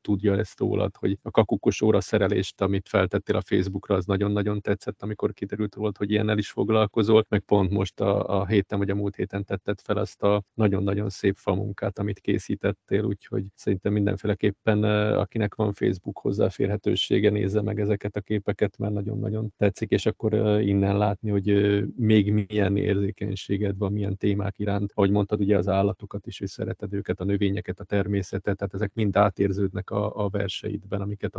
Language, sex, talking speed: Hungarian, male, 170 wpm